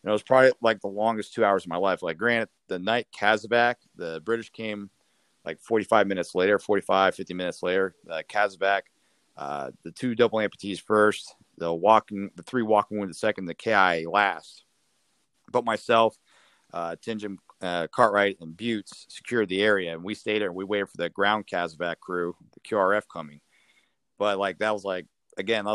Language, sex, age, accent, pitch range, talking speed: English, male, 40-59, American, 95-115 Hz, 185 wpm